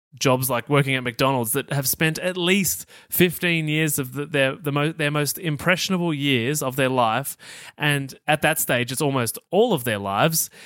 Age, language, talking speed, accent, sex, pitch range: 30-49, English, 175 wpm, Australian, male, 135-180 Hz